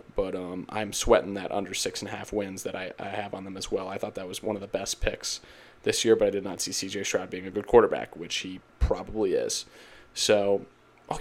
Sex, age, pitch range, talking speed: male, 20-39, 105-135 Hz, 250 wpm